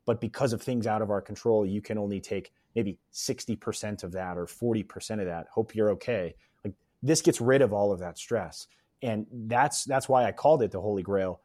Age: 30-49